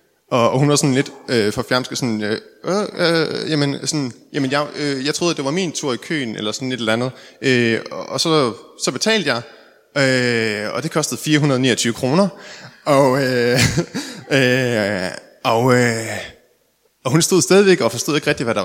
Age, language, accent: 20-39, Danish, native